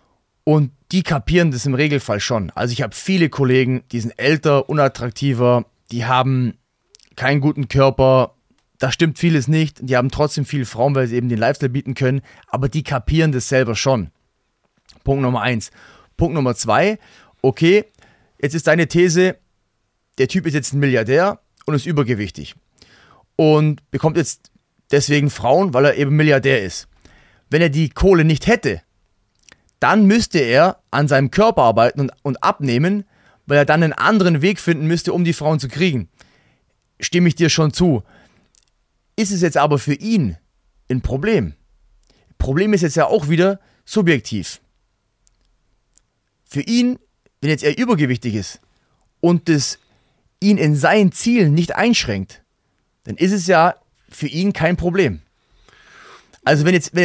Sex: male